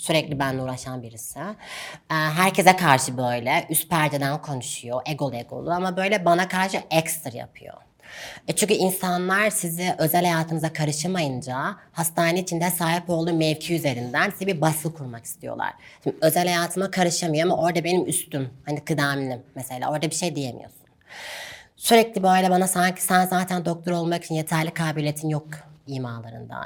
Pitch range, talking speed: 145-180 Hz, 145 wpm